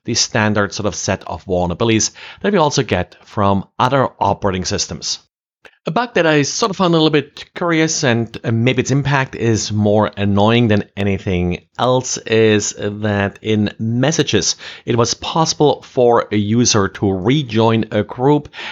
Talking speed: 160 wpm